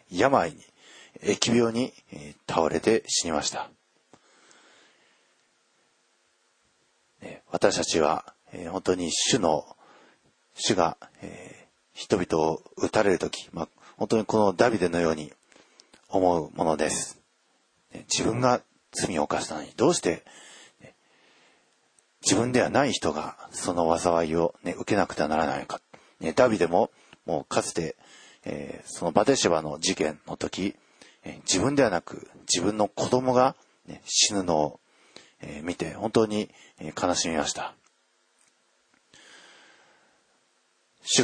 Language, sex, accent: Japanese, male, native